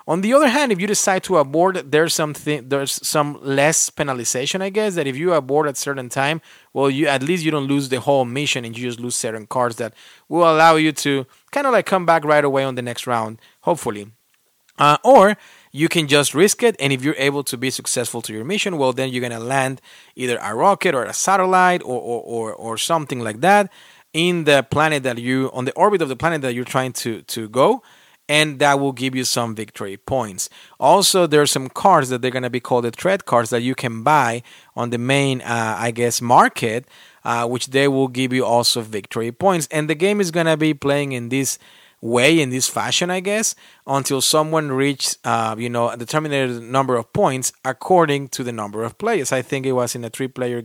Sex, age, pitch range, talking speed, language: male, 30-49, 120-155 Hz, 225 wpm, English